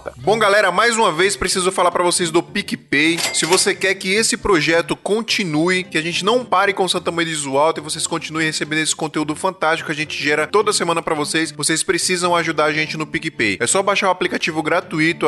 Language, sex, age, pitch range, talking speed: Portuguese, male, 20-39, 150-195 Hz, 225 wpm